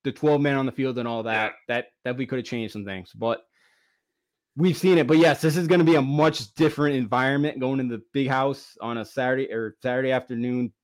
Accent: American